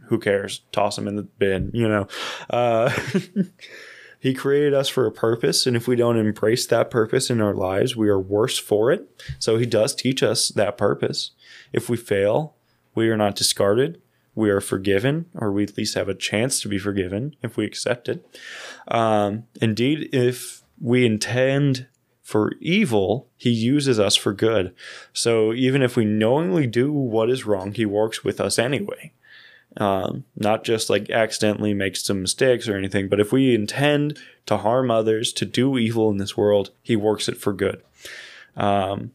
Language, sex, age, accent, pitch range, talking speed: English, male, 20-39, American, 105-130 Hz, 180 wpm